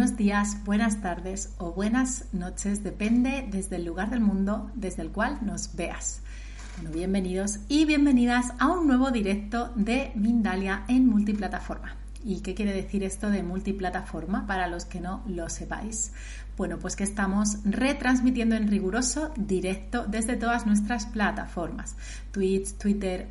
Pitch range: 190-235 Hz